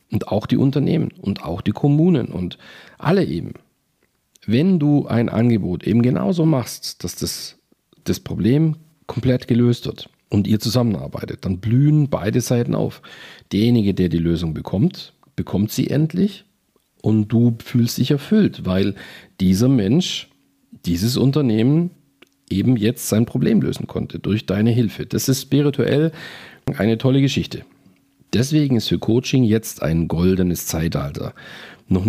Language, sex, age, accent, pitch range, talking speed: German, male, 50-69, German, 100-135 Hz, 140 wpm